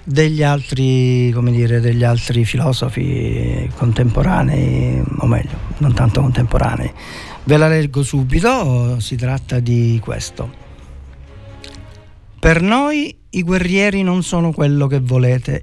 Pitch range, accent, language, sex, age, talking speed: 120-180 Hz, native, Italian, male, 50-69, 115 wpm